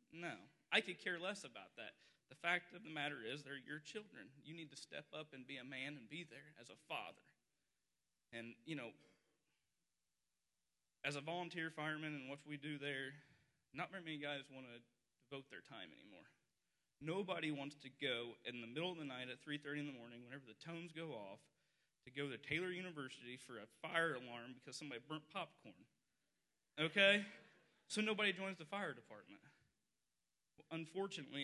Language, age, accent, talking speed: English, 30-49, American, 180 wpm